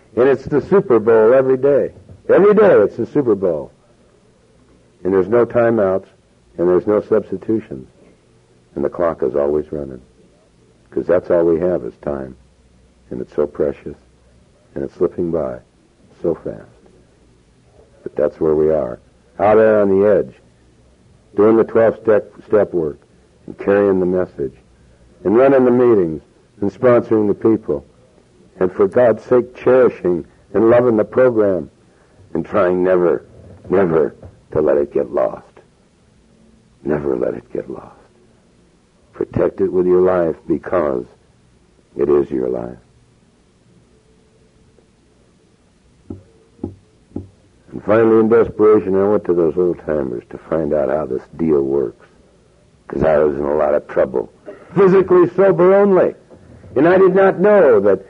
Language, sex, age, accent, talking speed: English, male, 60-79, American, 140 wpm